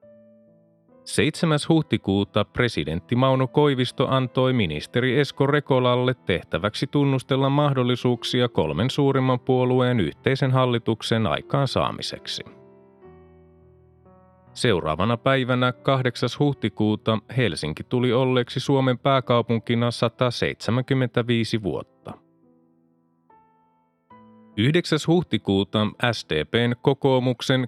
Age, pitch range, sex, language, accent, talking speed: 30-49, 110-135 Hz, male, Finnish, native, 70 wpm